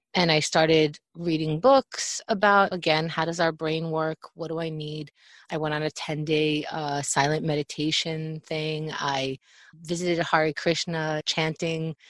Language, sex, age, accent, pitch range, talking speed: English, female, 30-49, American, 150-170 Hz, 150 wpm